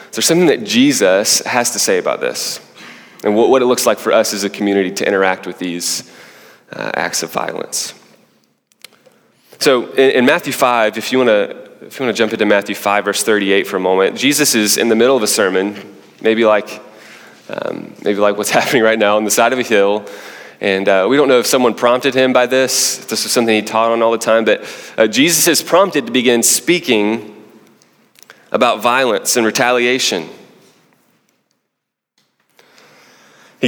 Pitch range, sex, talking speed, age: 105-130 Hz, male, 175 wpm, 20-39